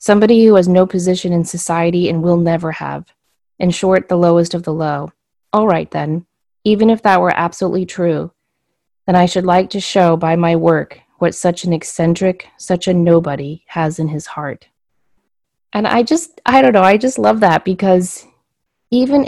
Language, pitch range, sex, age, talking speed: English, 160-185 Hz, female, 30-49, 185 wpm